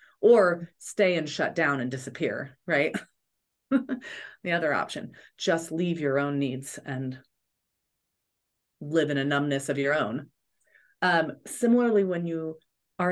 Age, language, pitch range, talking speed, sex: 30-49, English, 165-240 Hz, 135 wpm, female